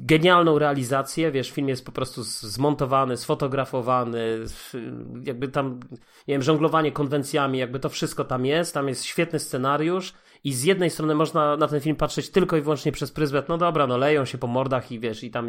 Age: 30-49